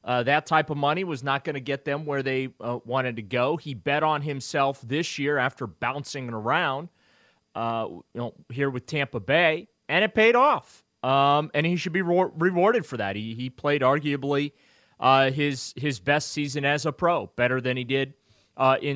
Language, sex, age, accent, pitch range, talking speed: English, male, 30-49, American, 120-155 Hz, 205 wpm